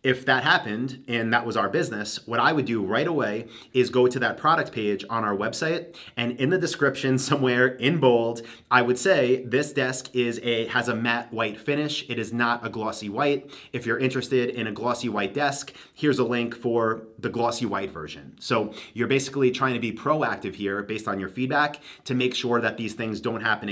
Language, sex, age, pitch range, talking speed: English, male, 30-49, 110-130 Hz, 215 wpm